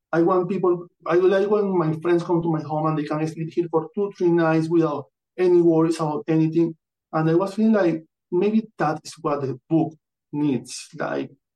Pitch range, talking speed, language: 150-180 Hz, 200 wpm, English